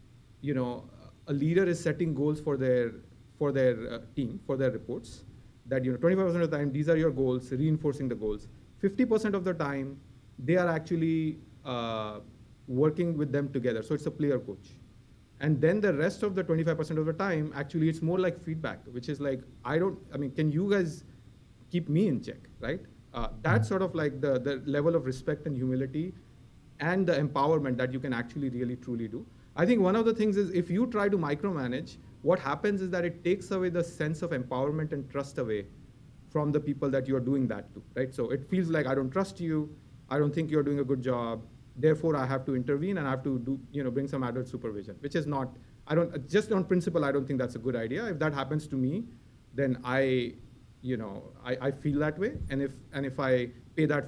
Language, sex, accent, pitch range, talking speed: English, male, Indian, 125-160 Hz, 225 wpm